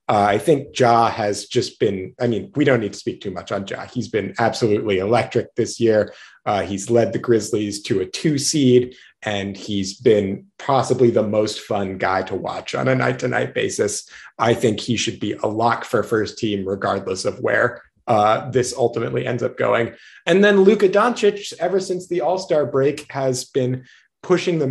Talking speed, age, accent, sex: 190 wpm, 30-49, American, male